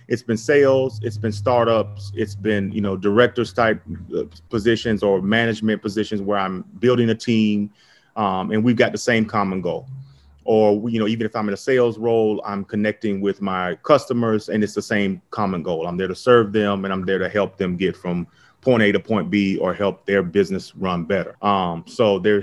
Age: 30-49